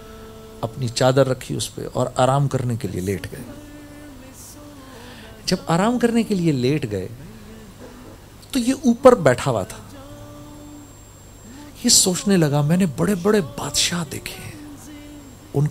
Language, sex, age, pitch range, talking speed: Urdu, male, 40-59, 110-140 Hz, 135 wpm